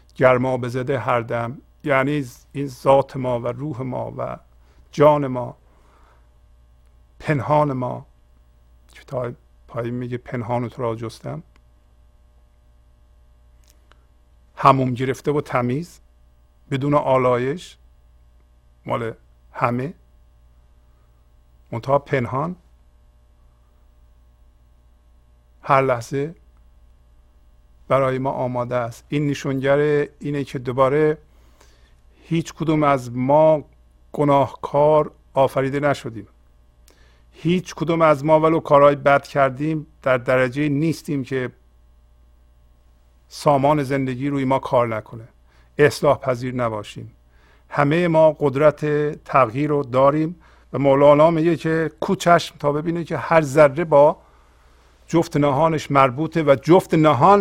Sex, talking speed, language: male, 100 wpm, Persian